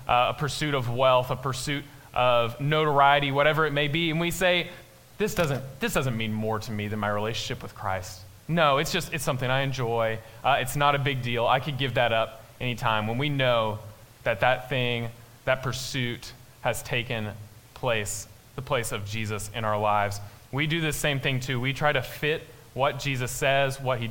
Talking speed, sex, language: 200 wpm, male, English